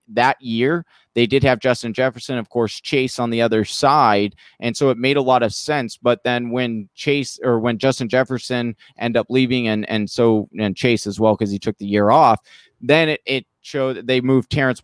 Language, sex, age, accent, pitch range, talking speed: English, male, 30-49, American, 110-130 Hz, 220 wpm